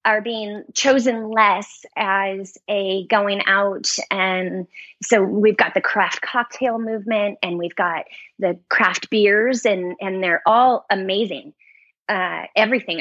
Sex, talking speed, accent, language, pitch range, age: female, 135 wpm, American, English, 185-225 Hz, 20-39